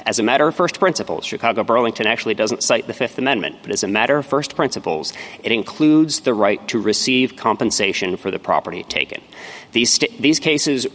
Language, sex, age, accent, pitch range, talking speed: English, male, 30-49, American, 115-145 Hz, 190 wpm